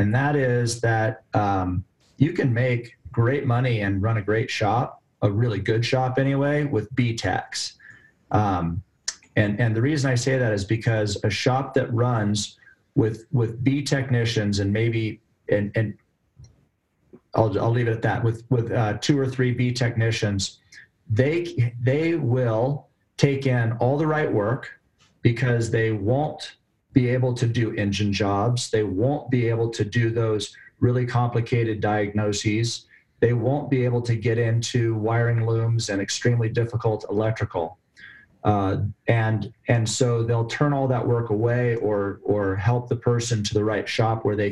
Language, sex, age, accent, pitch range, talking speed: English, male, 40-59, American, 110-125 Hz, 165 wpm